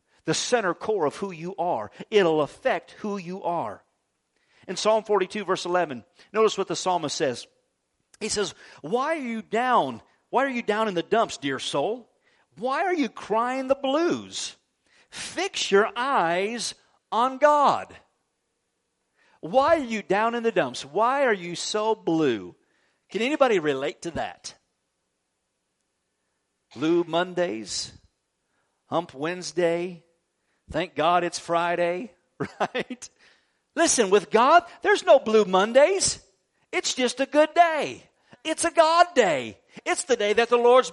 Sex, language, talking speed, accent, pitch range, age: male, English, 140 wpm, American, 175-270 Hz, 50-69